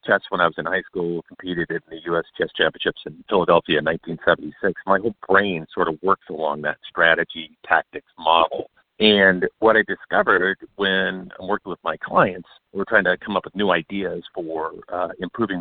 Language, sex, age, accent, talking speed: English, male, 50-69, American, 190 wpm